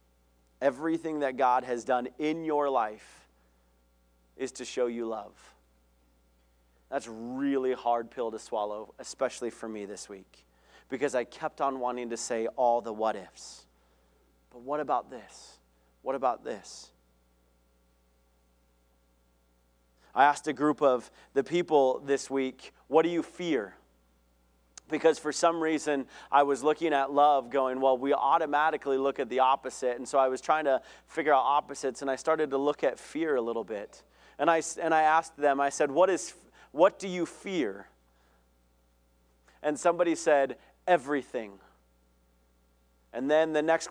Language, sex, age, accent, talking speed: English, male, 30-49, American, 155 wpm